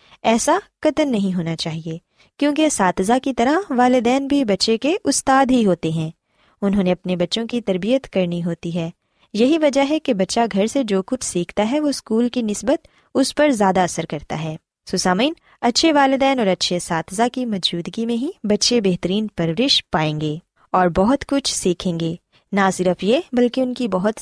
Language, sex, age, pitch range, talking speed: Urdu, female, 20-39, 180-265 Hz, 185 wpm